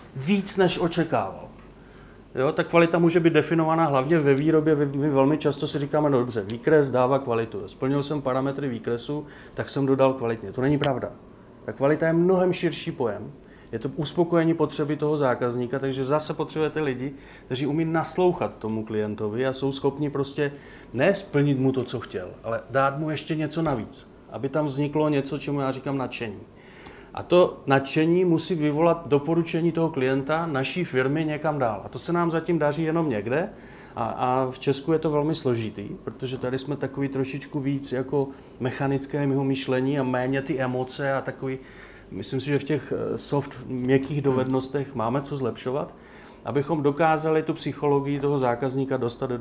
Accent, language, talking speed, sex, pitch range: native, Czech, 165 wpm, male, 130-155 Hz